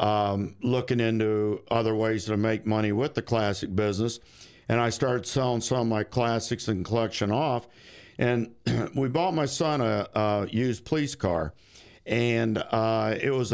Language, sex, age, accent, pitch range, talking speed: English, male, 50-69, American, 105-120 Hz, 165 wpm